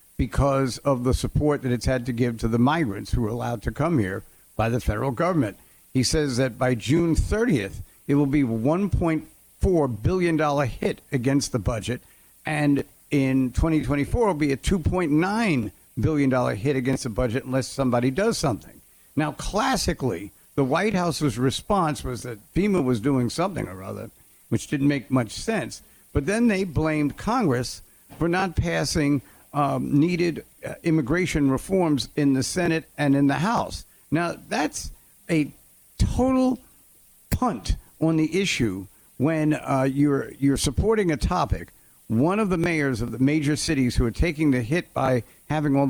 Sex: male